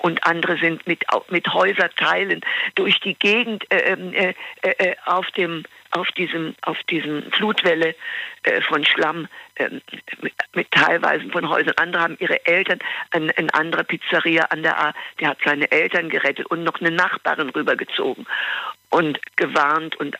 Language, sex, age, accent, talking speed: German, female, 50-69, German, 155 wpm